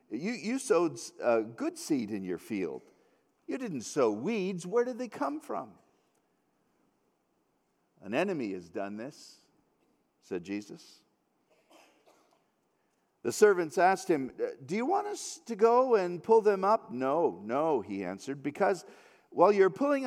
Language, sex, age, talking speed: English, male, 50-69, 140 wpm